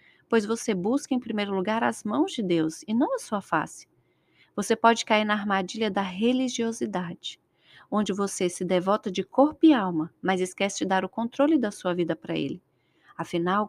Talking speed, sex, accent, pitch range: 185 wpm, female, Brazilian, 180-225 Hz